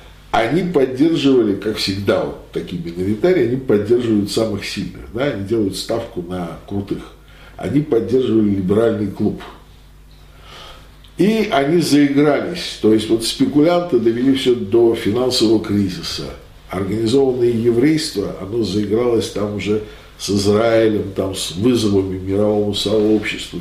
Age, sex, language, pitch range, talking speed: 50-69, male, Russian, 95-135 Hz, 115 wpm